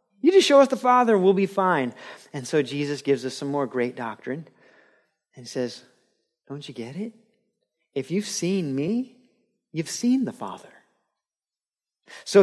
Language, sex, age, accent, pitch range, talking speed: English, male, 30-49, American, 130-190 Hz, 165 wpm